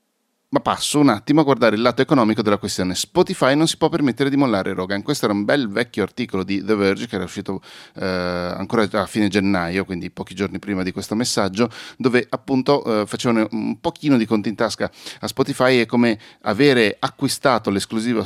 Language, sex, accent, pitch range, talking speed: Italian, male, native, 95-110 Hz, 195 wpm